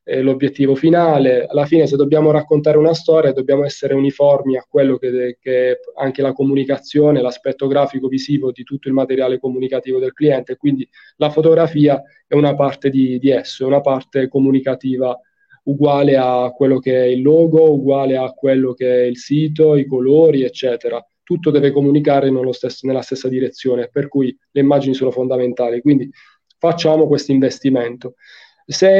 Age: 20-39